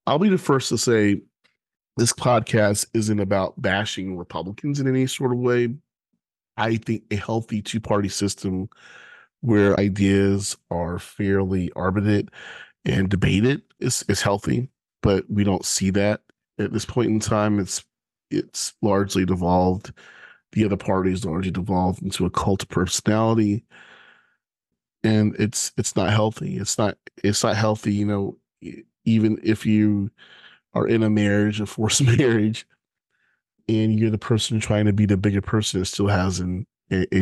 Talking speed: 155 wpm